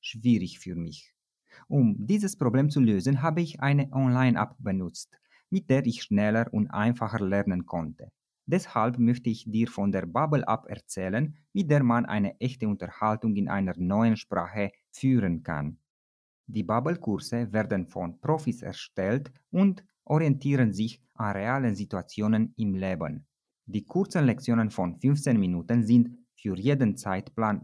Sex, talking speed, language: male, 140 wpm, Romanian